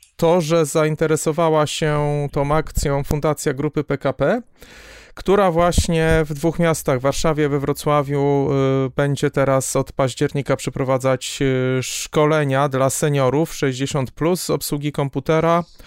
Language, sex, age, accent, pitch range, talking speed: Polish, male, 40-59, native, 130-150 Hz, 115 wpm